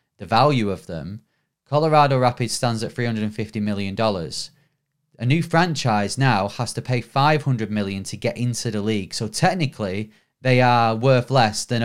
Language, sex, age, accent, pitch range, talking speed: English, male, 30-49, British, 110-135 Hz, 160 wpm